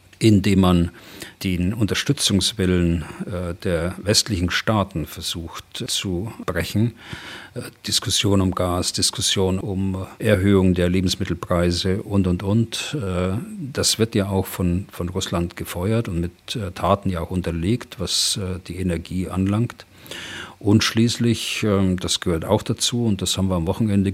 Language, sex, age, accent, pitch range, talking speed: German, male, 50-69, German, 90-110 Hz, 145 wpm